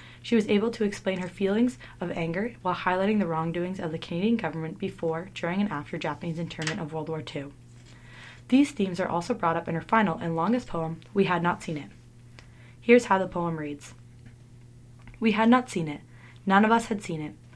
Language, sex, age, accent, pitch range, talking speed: English, female, 20-39, American, 155-195 Hz, 205 wpm